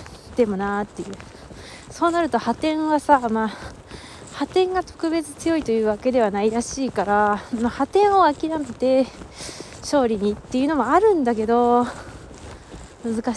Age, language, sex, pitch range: 20-39, Japanese, female, 210-280 Hz